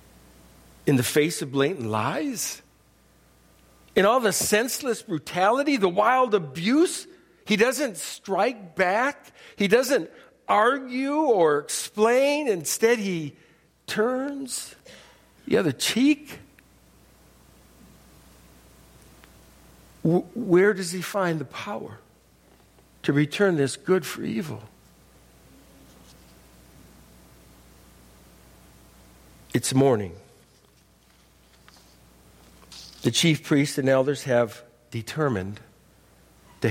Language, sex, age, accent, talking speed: English, male, 60-79, American, 85 wpm